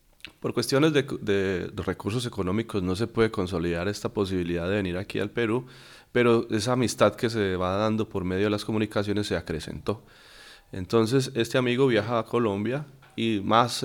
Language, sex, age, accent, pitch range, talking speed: Spanish, male, 30-49, Colombian, 95-115 Hz, 170 wpm